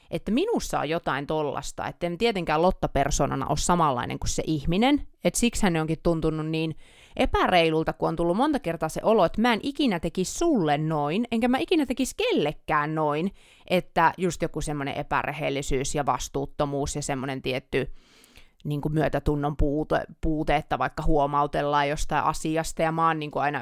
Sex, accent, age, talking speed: female, native, 30-49, 170 wpm